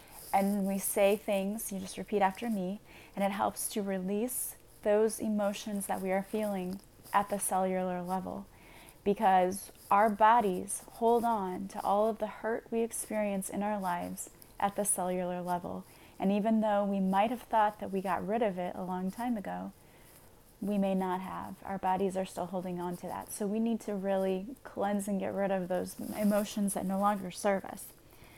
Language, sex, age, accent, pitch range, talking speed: English, female, 20-39, American, 180-210 Hz, 190 wpm